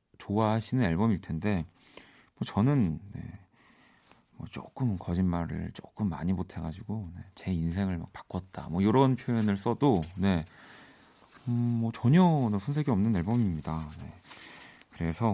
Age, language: 40-59, Korean